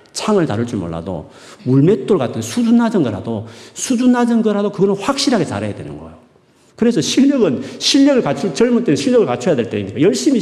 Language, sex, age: Korean, male, 40-59